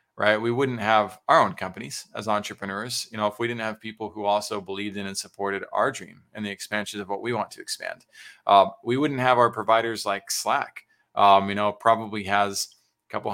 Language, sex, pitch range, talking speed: English, male, 105-120 Hz, 215 wpm